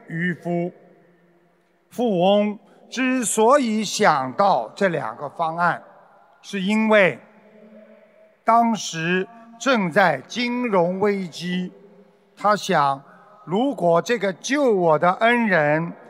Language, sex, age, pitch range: Chinese, male, 50-69, 165-215 Hz